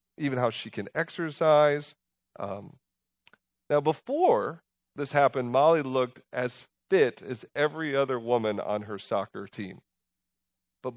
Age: 30-49